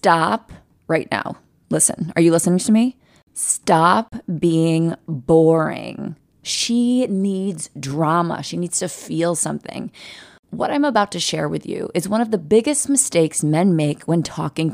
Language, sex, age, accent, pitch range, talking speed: English, female, 30-49, American, 165-210 Hz, 150 wpm